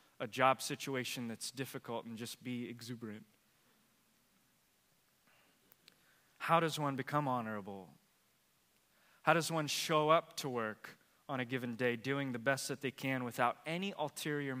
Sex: male